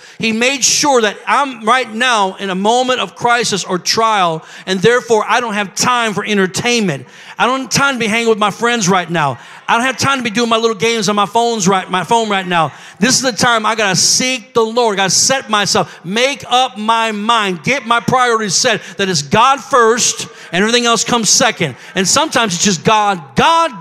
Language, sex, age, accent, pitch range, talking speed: English, male, 50-69, American, 200-255 Hz, 225 wpm